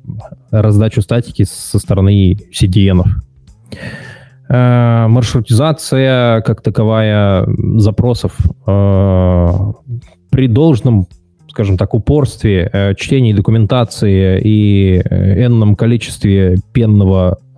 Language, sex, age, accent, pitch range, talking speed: Russian, male, 20-39, native, 95-115 Hz, 70 wpm